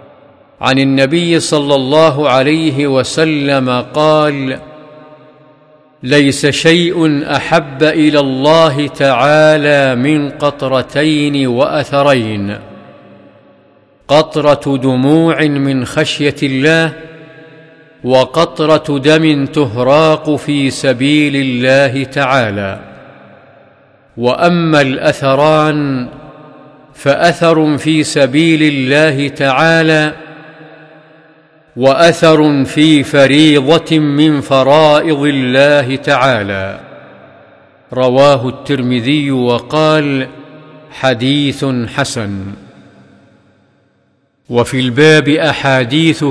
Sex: male